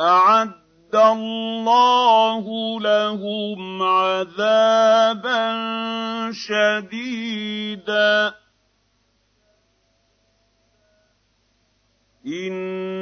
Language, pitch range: Arabic, 155-225 Hz